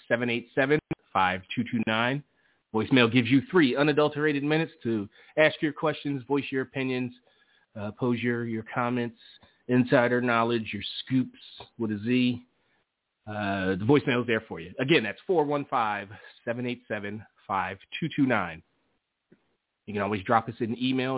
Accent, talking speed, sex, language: American, 125 wpm, male, English